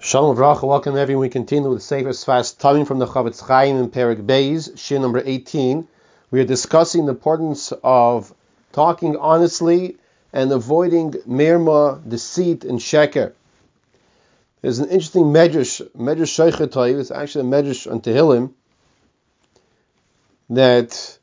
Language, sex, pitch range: English, male, 130-170 Hz